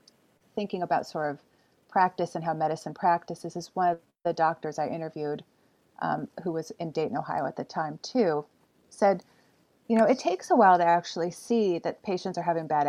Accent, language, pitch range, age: American, English, 165-220 Hz, 30-49